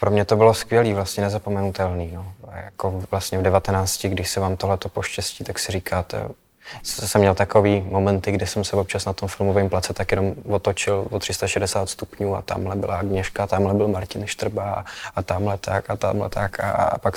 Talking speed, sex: 190 wpm, male